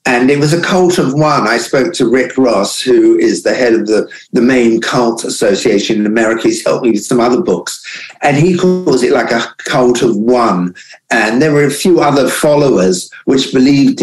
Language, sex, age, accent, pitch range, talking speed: English, male, 50-69, British, 120-150 Hz, 210 wpm